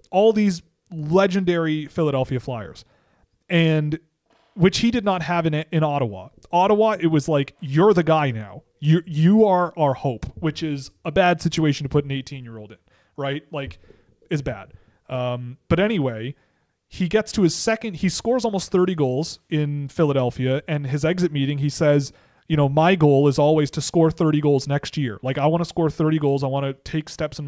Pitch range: 140-170 Hz